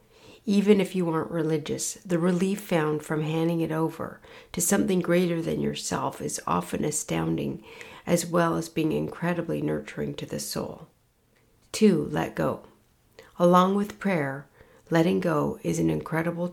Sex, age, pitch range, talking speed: female, 60-79, 150-180 Hz, 145 wpm